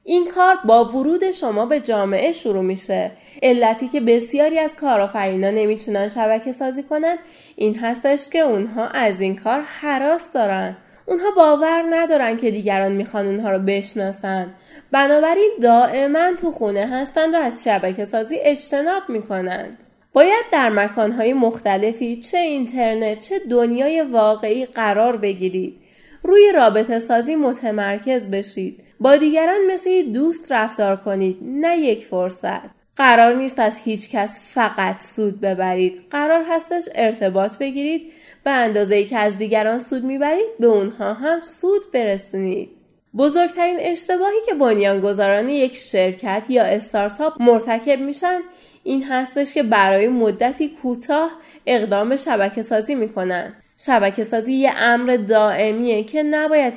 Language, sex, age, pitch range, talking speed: Persian, female, 10-29, 210-300 Hz, 135 wpm